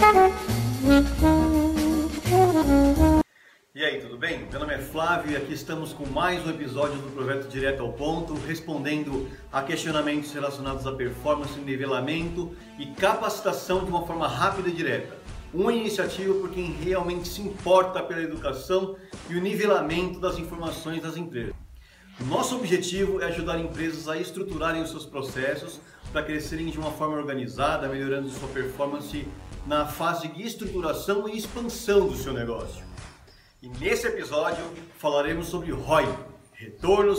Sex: male